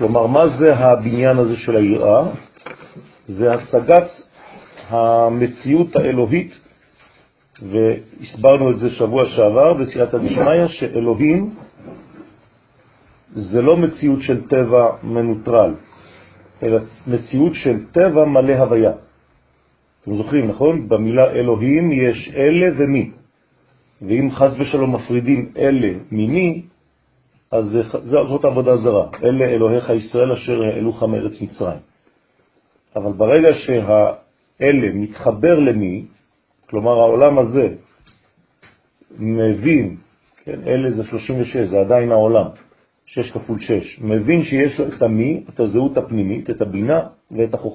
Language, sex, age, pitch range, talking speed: French, male, 40-59, 110-140 Hz, 105 wpm